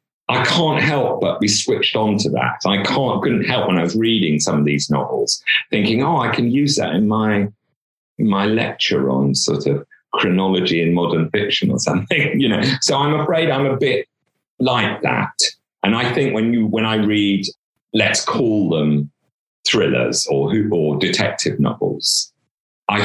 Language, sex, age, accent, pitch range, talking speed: English, male, 40-59, British, 85-120 Hz, 180 wpm